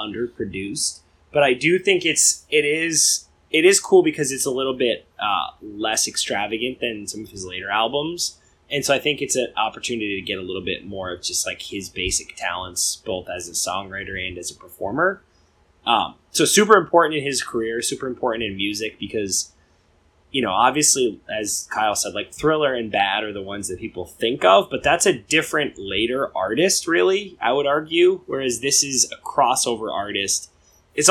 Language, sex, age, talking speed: English, male, 20-39, 190 wpm